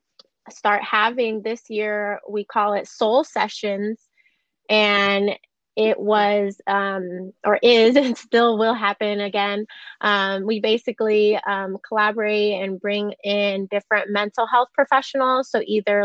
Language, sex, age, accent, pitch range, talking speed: English, female, 20-39, American, 200-225 Hz, 125 wpm